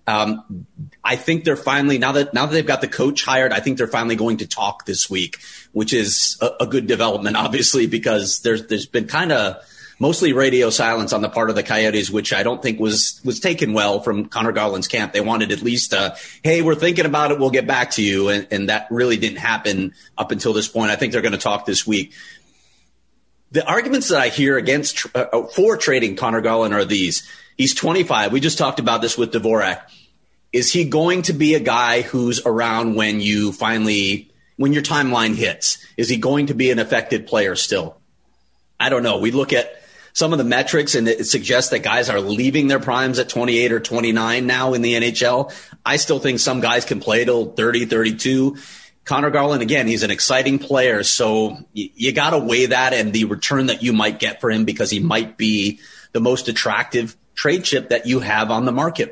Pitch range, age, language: 110-135 Hz, 30-49, English